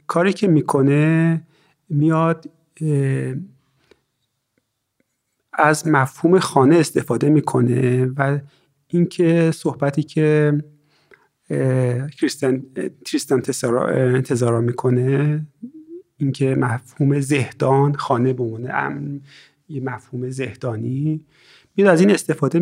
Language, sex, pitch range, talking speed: Persian, male, 125-155 Hz, 75 wpm